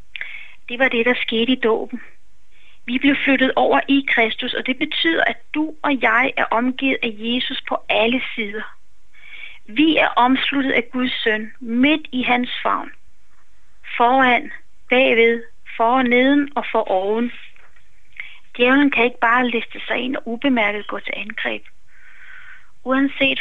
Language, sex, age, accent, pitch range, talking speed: Danish, female, 30-49, native, 225-265 Hz, 145 wpm